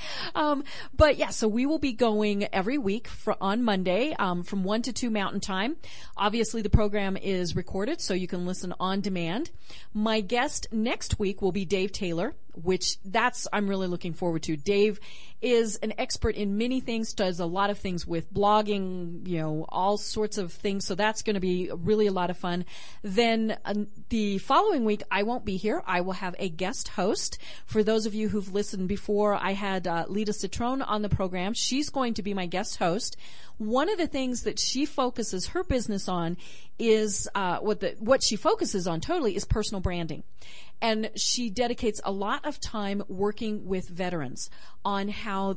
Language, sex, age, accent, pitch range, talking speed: English, female, 40-59, American, 185-225 Hz, 190 wpm